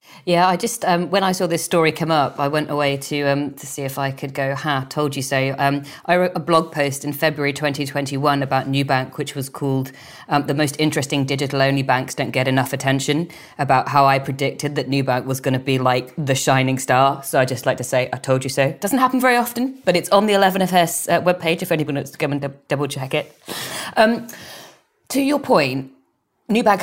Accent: British